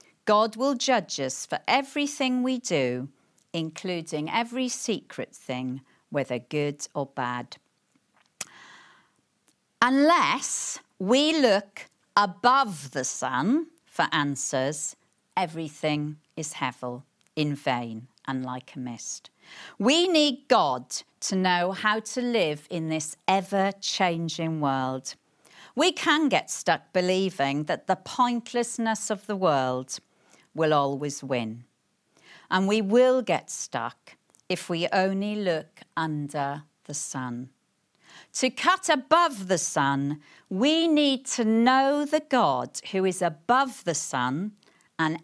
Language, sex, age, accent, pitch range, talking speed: English, female, 50-69, British, 145-235 Hz, 120 wpm